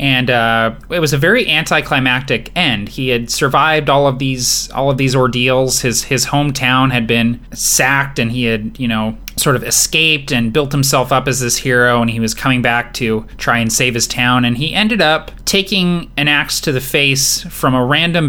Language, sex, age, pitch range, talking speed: English, male, 20-39, 120-145 Hz, 205 wpm